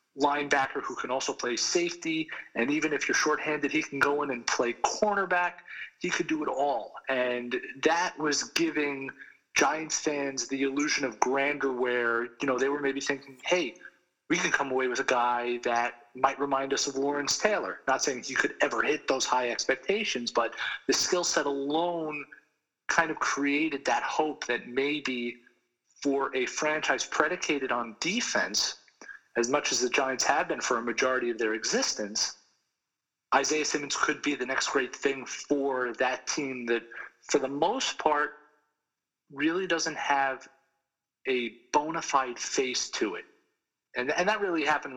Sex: male